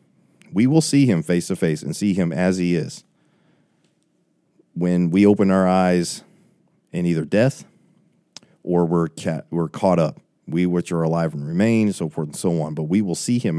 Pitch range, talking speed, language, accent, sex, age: 85-100 Hz, 190 wpm, English, American, male, 40-59